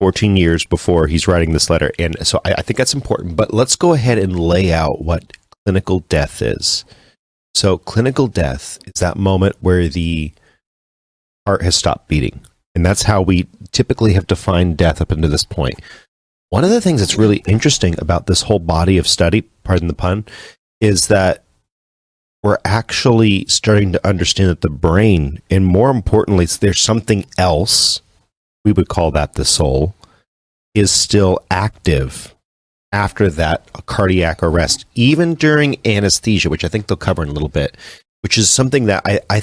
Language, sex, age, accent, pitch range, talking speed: English, male, 40-59, American, 85-105 Hz, 170 wpm